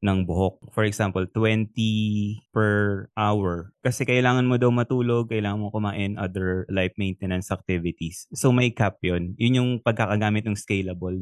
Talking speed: 150 wpm